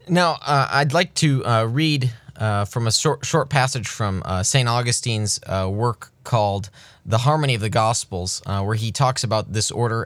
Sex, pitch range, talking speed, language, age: male, 110-140 Hz, 190 wpm, English, 20-39